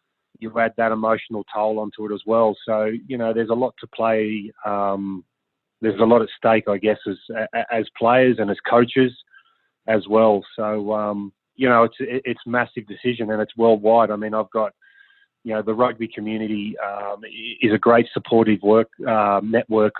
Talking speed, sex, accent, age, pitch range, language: 185 wpm, male, Australian, 20-39, 105-115 Hz, English